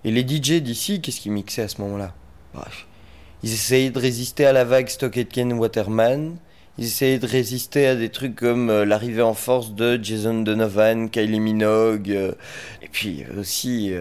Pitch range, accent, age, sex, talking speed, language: 105-170 Hz, French, 30-49, male, 185 wpm, French